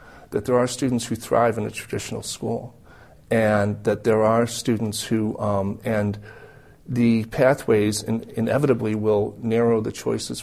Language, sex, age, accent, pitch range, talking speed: English, male, 40-59, American, 105-125 Hz, 150 wpm